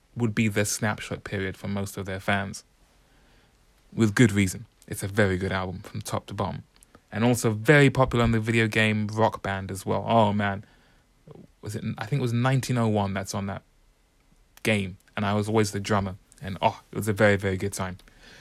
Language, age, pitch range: English, 20-39, 105-125 Hz